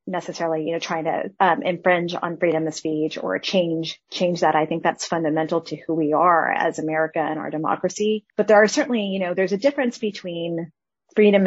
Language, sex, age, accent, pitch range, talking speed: English, female, 30-49, American, 160-195 Hz, 205 wpm